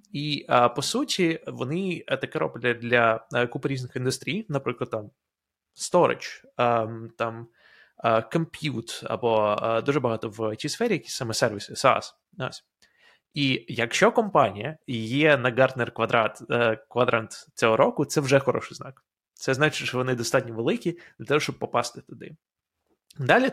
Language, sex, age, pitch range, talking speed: Ukrainian, male, 20-39, 115-155 Hz, 130 wpm